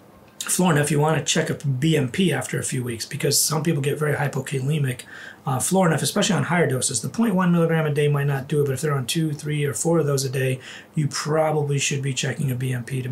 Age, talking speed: 30-49, 235 wpm